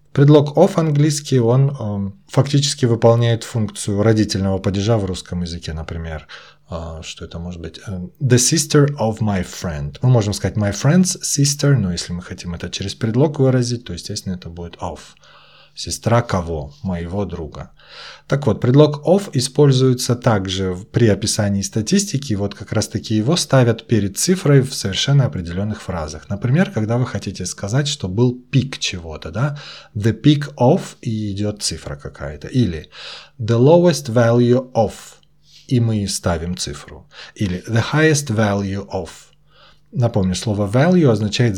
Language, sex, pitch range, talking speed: Russian, male, 95-140 Hz, 150 wpm